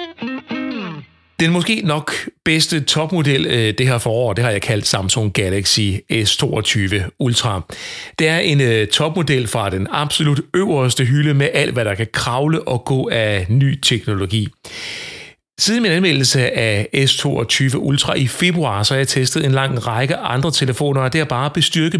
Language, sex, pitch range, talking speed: Danish, male, 110-155 Hz, 160 wpm